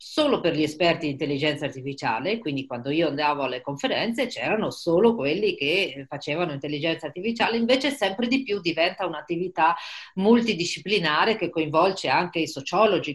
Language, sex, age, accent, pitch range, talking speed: Italian, female, 40-59, native, 150-210 Hz, 145 wpm